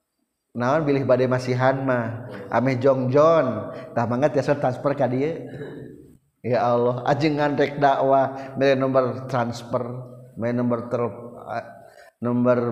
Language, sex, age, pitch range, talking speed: Indonesian, male, 30-49, 125-195 Hz, 130 wpm